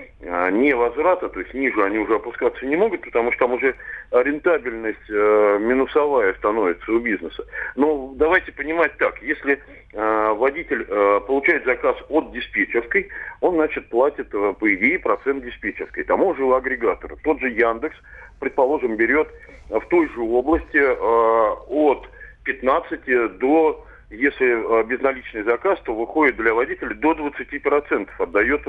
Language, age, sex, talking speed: Russian, 40-59, male, 130 wpm